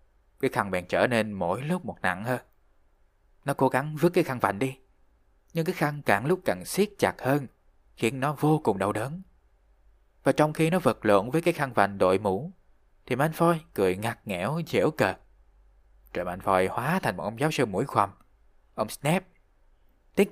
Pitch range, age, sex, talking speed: 100-140 Hz, 20-39, male, 190 wpm